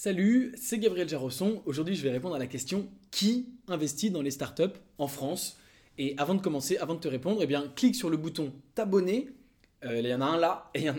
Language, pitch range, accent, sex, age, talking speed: English, 130-180 Hz, French, male, 20-39, 240 wpm